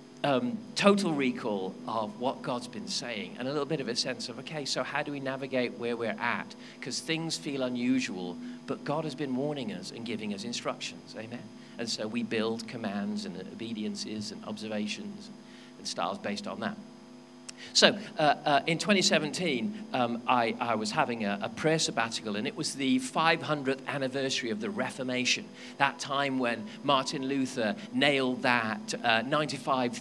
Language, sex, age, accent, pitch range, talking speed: English, male, 40-59, British, 125-190 Hz, 170 wpm